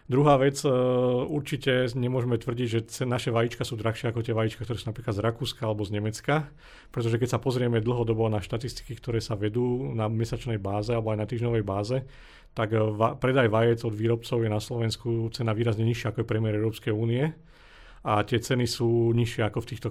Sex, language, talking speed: male, Slovak, 190 wpm